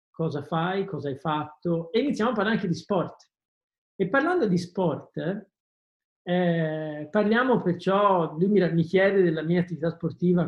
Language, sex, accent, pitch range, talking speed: Italian, male, native, 155-195 Hz, 150 wpm